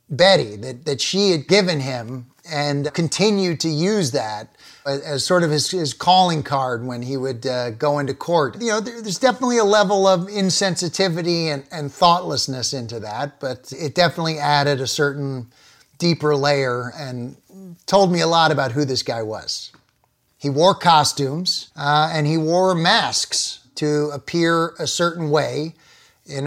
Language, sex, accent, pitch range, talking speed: English, male, American, 140-165 Hz, 160 wpm